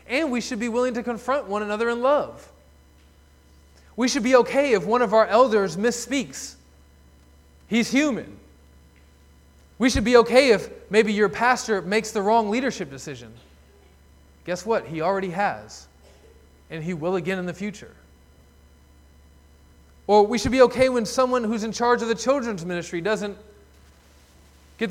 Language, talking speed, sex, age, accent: English, 155 wpm, male, 20-39, American